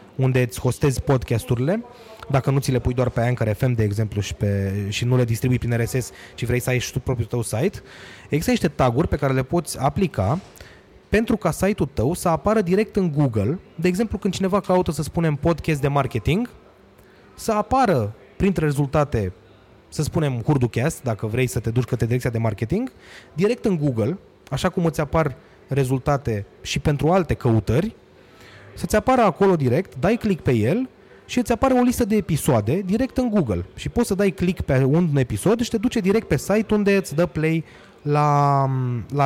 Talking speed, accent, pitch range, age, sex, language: 190 wpm, native, 125-190 Hz, 20-39, male, Romanian